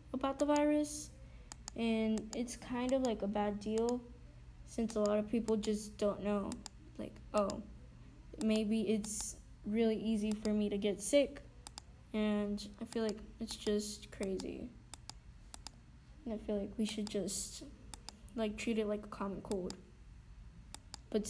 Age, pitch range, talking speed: 10-29, 210-240 Hz, 145 wpm